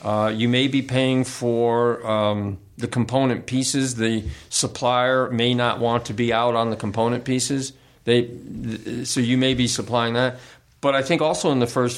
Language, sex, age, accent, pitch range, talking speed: English, male, 50-69, American, 110-130 Hz, 185 wpm